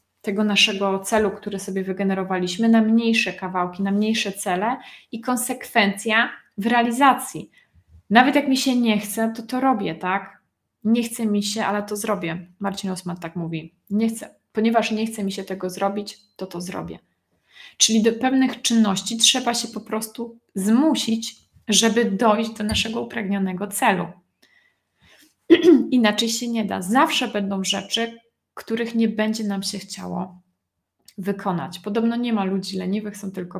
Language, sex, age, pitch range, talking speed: Polish, female, 20-39, 190-230 Hz, 150 wpm